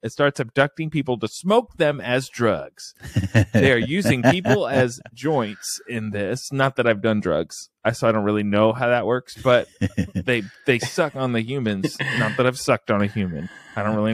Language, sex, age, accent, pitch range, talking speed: English, male, 30-49, American, 105-140 Hz, 205 wpm